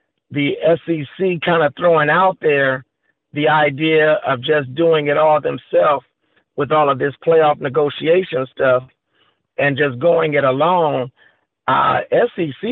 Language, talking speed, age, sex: English, 130 wpm, 50-69, male